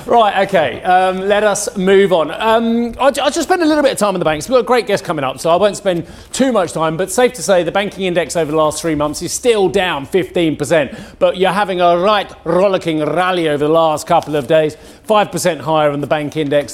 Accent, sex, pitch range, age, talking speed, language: British, male, 150-195 Hz, 30-49, 245 wpm, English